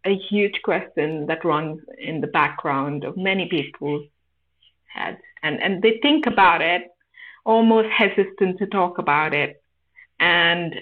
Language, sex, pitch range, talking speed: English, female, 155-225 Hz, 140 wpm